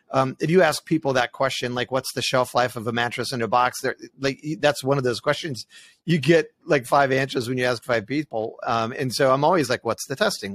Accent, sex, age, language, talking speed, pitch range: American, male, 40-59, English, 245 wpm, 120-155 Hz